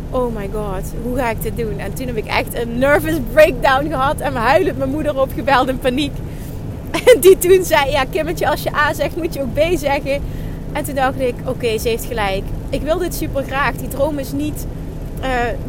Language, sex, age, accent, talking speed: Dutch, female, 30-49, Dutch, 220 wpm